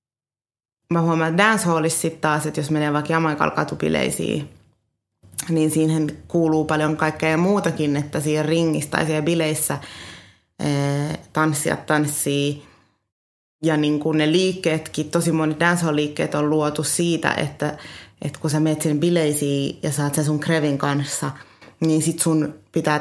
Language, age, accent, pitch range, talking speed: Finnish, 30-49, native, 150-170 Hz, 140 wpm